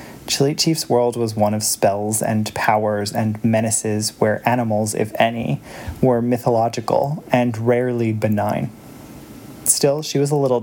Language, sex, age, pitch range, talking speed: English, male, 30-49, 110-135 Hz, 140 wpm